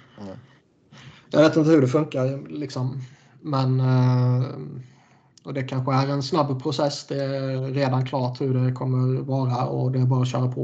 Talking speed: 170 wpm